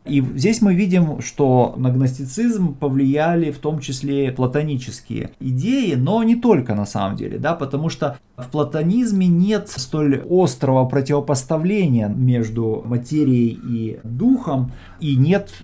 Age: 20-39